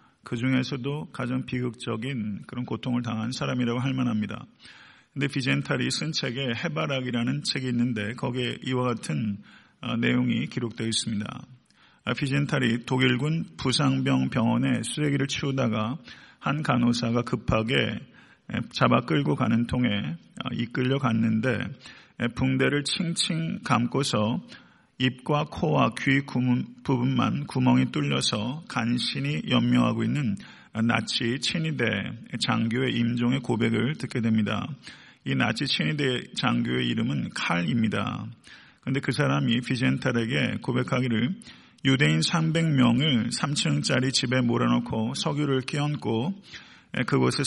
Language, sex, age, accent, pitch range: Korean, male, 40-59, native, 115-140 Hz